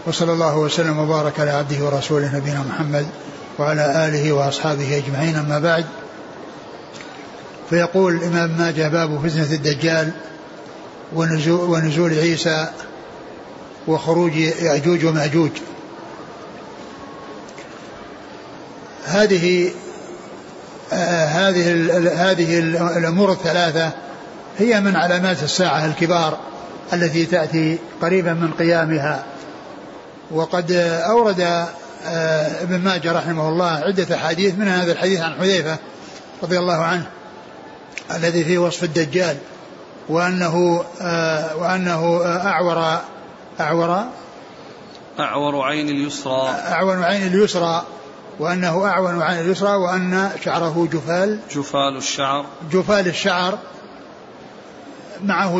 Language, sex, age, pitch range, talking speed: Arabic, male, 60-79, 160-180 Hz, 90 wpm